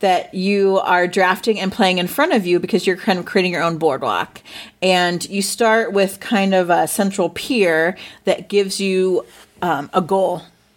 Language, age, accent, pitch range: English, 30-49, American, 170-200 Hz